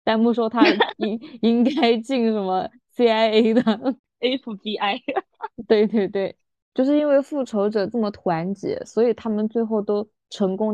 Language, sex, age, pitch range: Chinese, female, 20-39, 190-235 Hz